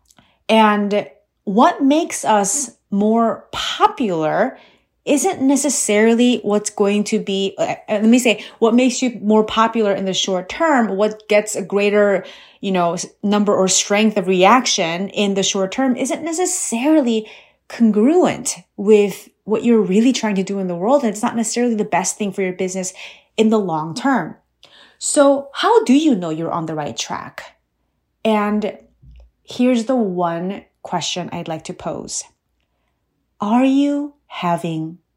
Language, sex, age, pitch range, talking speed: English, female, 30-49, 180-255 Hz, 150 wpm